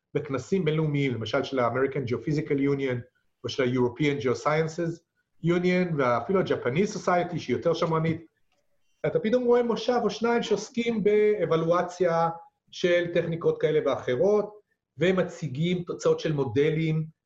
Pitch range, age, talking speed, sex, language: 140-185 Hz, 40-59, 120 wpm, male, Hebrew